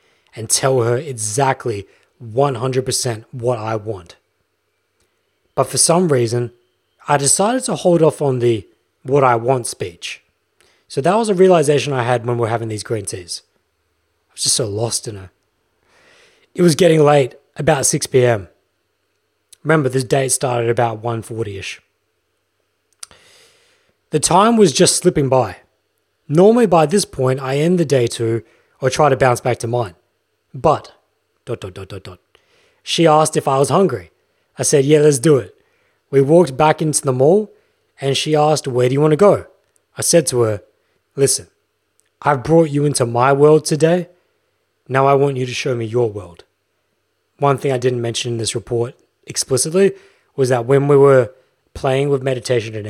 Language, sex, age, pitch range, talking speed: English, male, 30-49, 120-160 Hz, 170 wpm